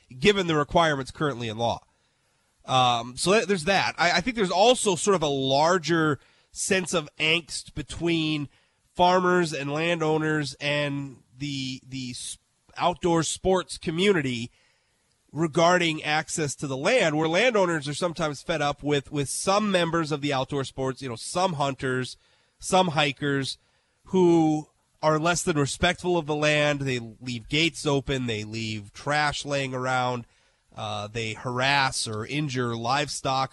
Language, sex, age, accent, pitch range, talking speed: English, male, 30-49, American, 125-170 Hz, 145 wpm